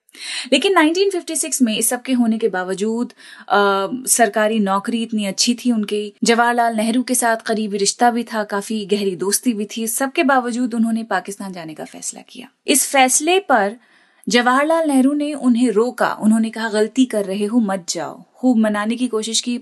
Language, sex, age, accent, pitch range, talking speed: Hindi, female, 30-49, native, 205-245 Hz, 175 wpm